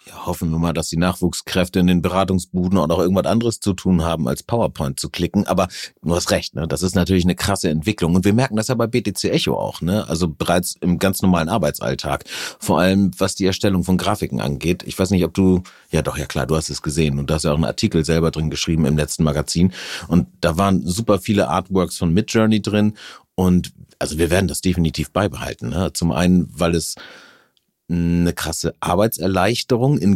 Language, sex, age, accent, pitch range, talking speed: German, male, 40-59, German, 85-100 Hz, 215 wpm